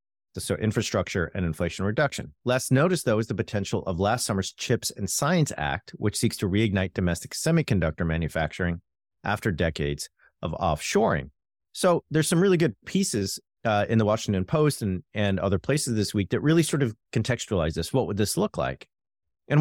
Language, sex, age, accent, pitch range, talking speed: English, male, 40-59, American, 95-125 Hz, 180 wpm